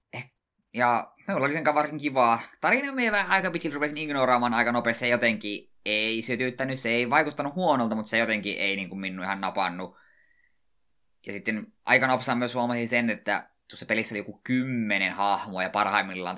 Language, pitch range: Finnish, 95-120 Hz